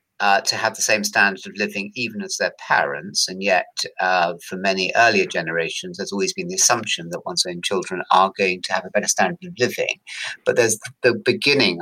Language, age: English, 50-69